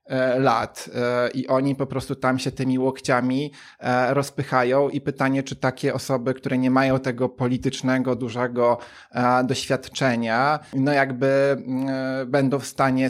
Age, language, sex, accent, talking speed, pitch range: 20-39, Polish, male, native, 125 wpm, 120-140 Hz